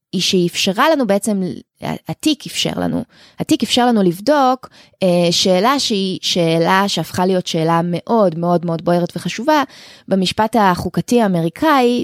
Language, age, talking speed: Hebrew, 20-39, 125 wpm